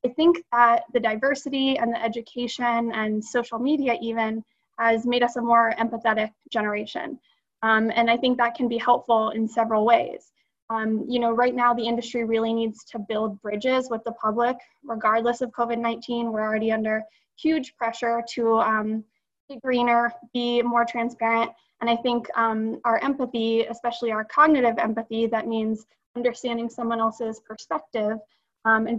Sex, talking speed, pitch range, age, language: female, 160 wpm, 225-245 Hz, 20-39, English